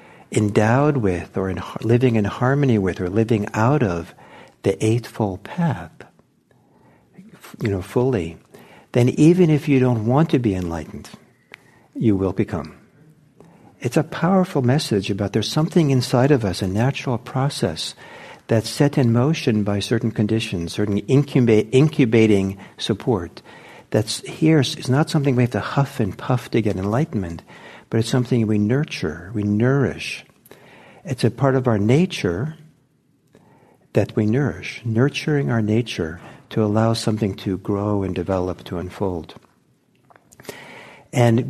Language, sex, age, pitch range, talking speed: English, male, 60-79, 100-130 Hz, 140 wpm